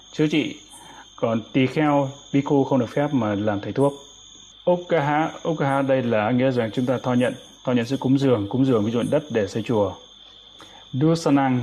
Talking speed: 195 wpm